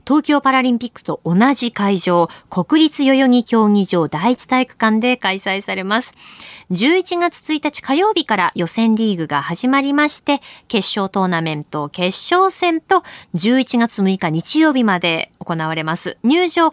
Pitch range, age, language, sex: 185-300 Hz, 20-39, Japanese, female